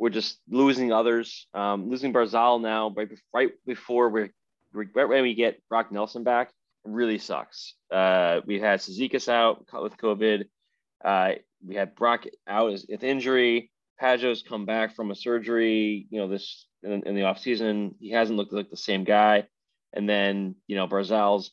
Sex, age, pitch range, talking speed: male, 20-39, 100-120 Hz, 175 wpm